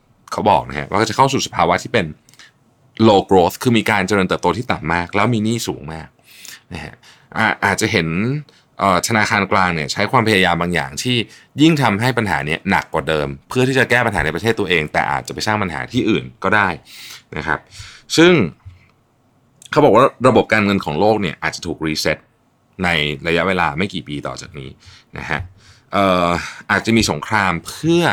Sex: male